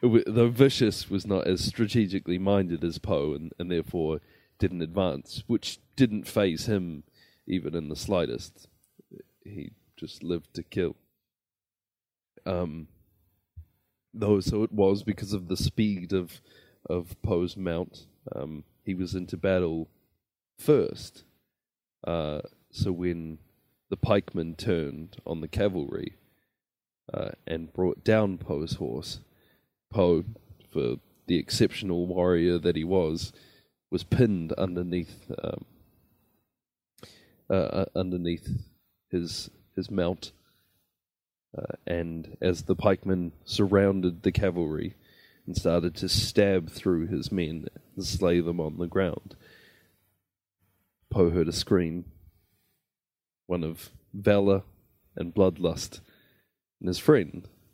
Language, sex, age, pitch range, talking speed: English, male, 30-49, 85-100 Hz, 115 wpm